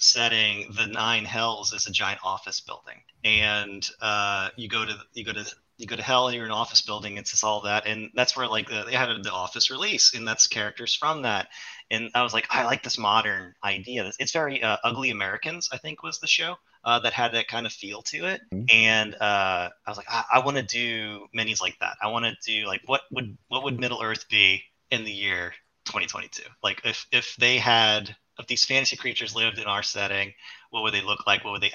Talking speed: 235 wpm